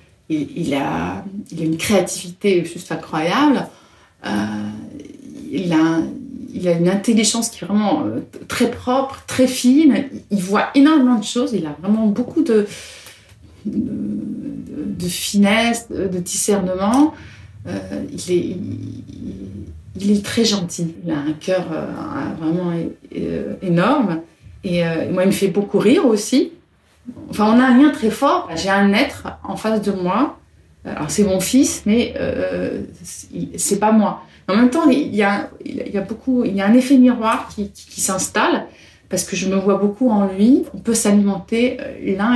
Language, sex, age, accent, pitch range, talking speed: French, female, 30-49, French, 180-245 Hz, 160 wpm